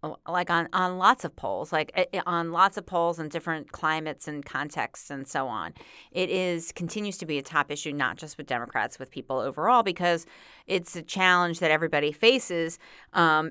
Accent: American